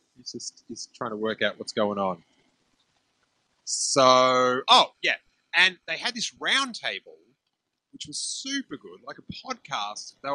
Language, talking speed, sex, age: English, 155 wpm, male, 30-49